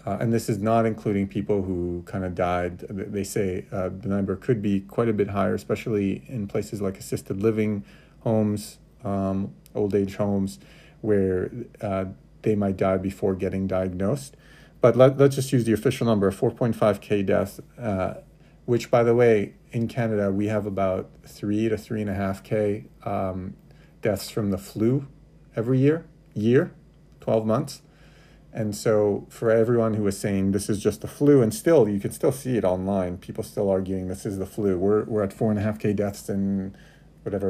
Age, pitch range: 40-59, 100-125 Hz